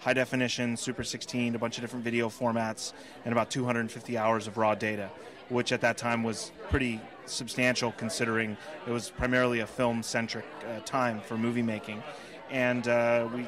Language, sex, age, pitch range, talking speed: English, male, 30-49, 115-125 Hz, 175 wpm